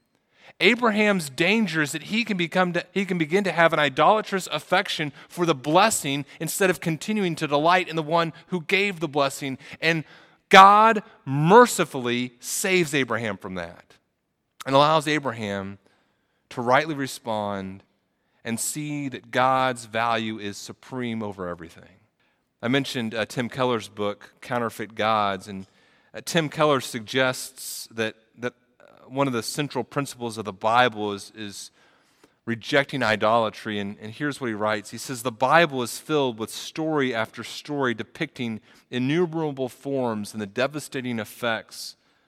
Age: 30-49